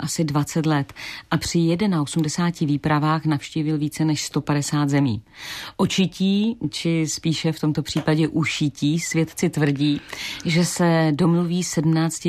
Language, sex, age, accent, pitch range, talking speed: Czech, female, 40-59, native, 140-165 Hz, 120 wpm